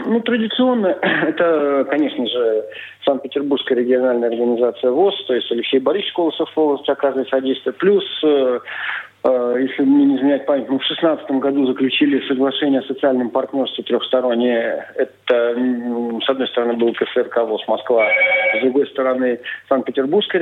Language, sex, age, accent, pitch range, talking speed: Russian, male, 40-59, native, 125-160 Hz, 130 wpm